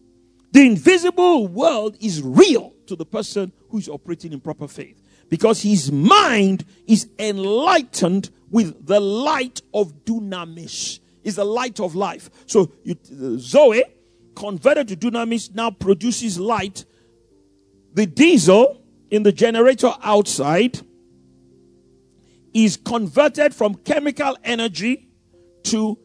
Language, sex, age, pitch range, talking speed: English, male, 50-69, 195-265 Hz, 115 wpm